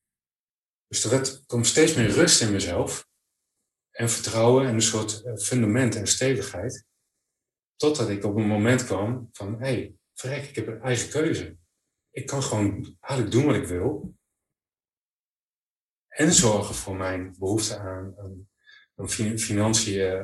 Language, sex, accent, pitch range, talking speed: Dutch, male, Dutch, 100-125 Hz, 140 wpm